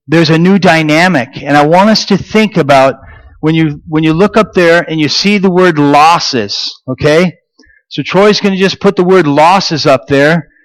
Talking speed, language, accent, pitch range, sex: 205 wpm, English, American, 150-205 Hz, male